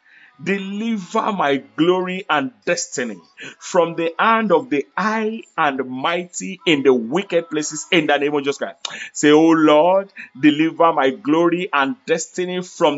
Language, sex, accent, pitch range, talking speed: English, male, Nigerian, 155-195 Hz, 150 wpm